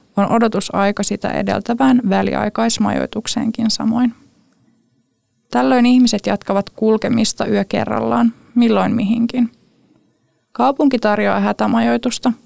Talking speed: 80 wpm